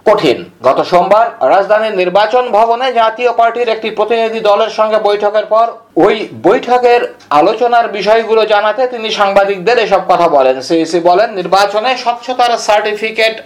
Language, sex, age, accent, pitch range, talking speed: Bengali, male, 50-69, native, 190-230 Hz, 110 wpm